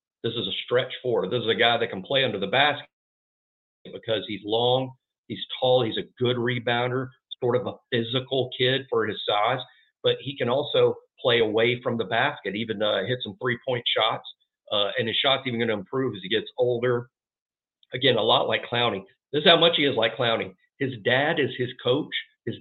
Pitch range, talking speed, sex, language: 115-185 Hz, 205 wpm, male, English